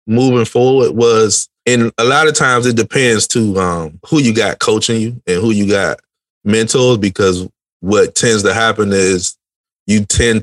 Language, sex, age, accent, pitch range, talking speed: English, male, 30-49, American, 90-115 Hz, 175 wpm